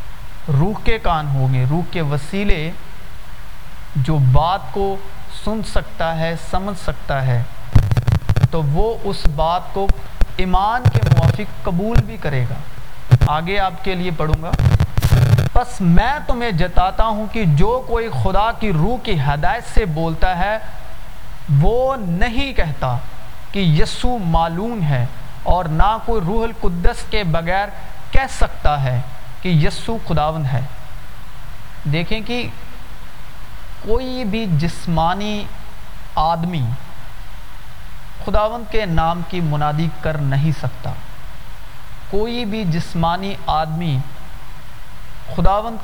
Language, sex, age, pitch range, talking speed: Urdu, male, 40-59, 135-195 Hz, 120 wpm